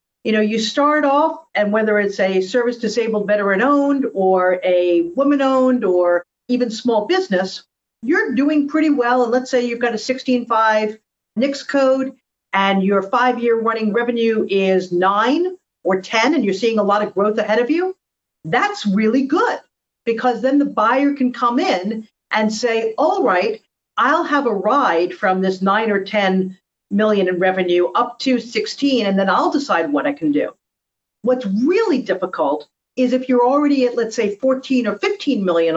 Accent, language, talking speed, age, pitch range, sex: American, English, 175 wpm, 50-69, 205-270 Hz, female